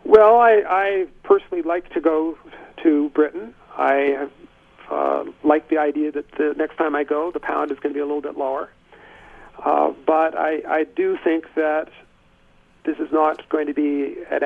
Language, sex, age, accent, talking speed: English, male, 50-69, American, 185 wpm